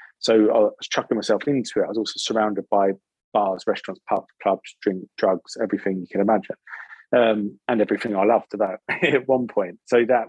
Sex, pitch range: male, 105-115 Hz